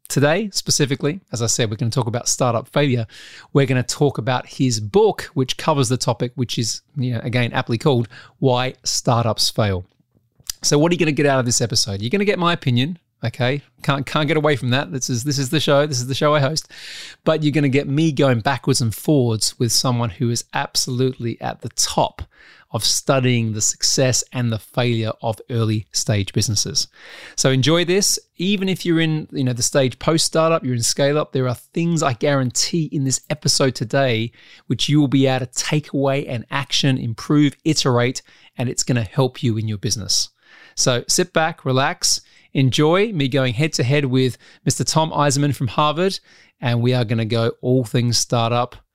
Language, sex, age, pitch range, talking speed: English, male, 30-49, 120-150 Hz, 200 wpm